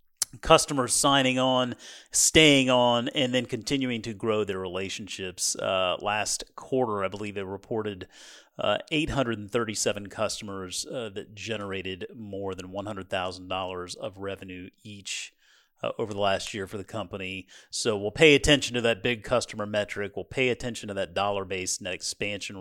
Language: English